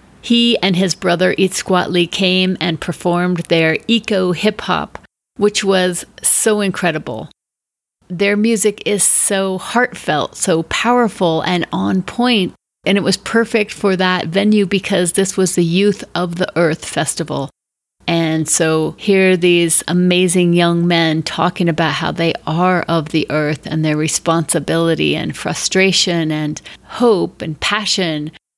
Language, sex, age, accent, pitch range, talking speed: English, female, 30-49, American, 175-205 Hz, 135 wpm